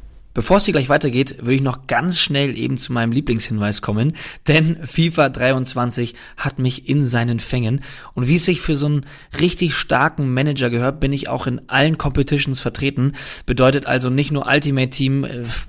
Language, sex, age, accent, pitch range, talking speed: German, male, 20-39, German, 125-145 Hz, 185 wpm